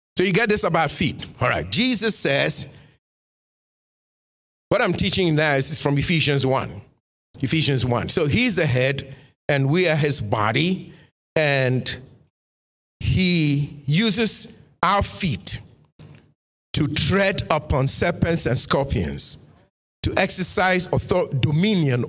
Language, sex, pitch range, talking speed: English, male, 115-160 Hz, 120 wpm